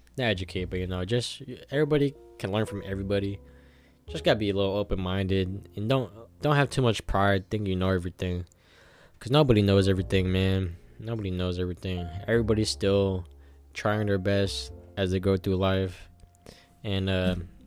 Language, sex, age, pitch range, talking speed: English, male, 10-29, 90-110 Hz, 160 wpm